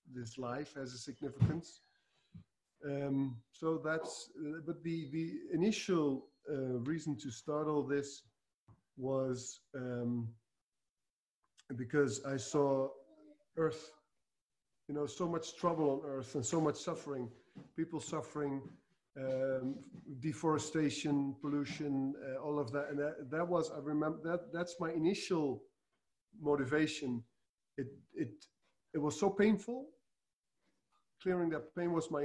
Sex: male